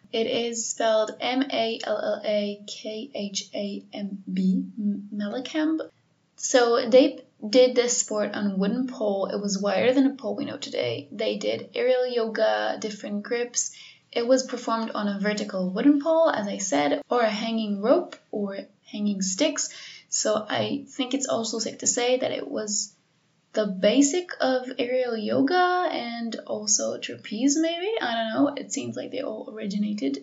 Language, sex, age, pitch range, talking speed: English, female, 20-39, 210-275 Hz, 150 wpm